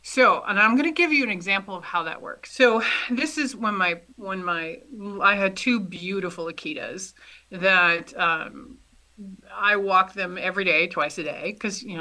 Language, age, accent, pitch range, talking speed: English, 30-49, American, 180-245 Hz, 185 wpm